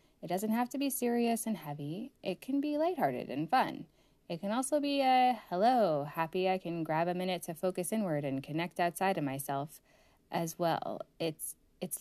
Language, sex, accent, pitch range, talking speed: English, female, American, 155-220 Hz, 190 wpm